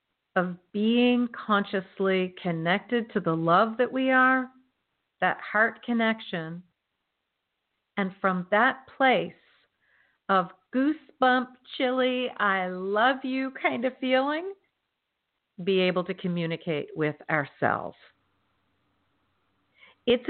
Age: 50-69